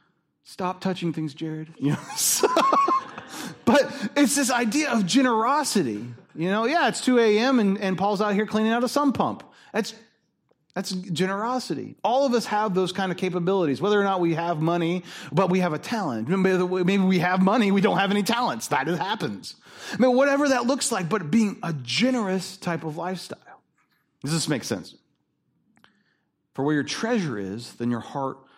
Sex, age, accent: male, 30-49, American